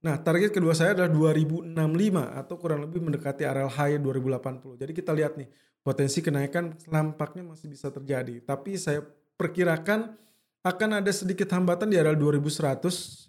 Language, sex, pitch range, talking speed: Indonesian, male, 140-175 Hz, 150 wpm